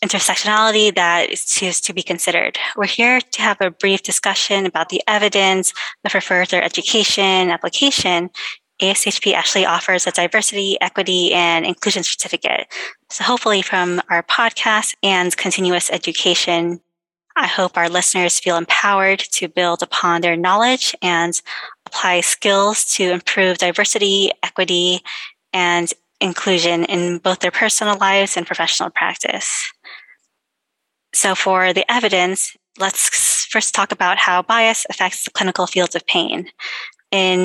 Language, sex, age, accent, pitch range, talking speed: English, female, 20-39, American, 180-210 Hz, 135 wpm